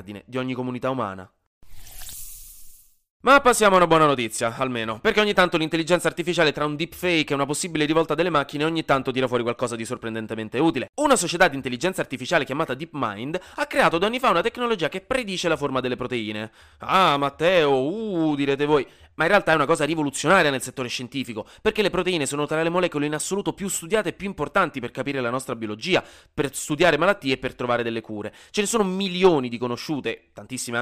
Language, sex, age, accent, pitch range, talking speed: Italian, male, 20-39, native, 125-185 Hz, 200 wpm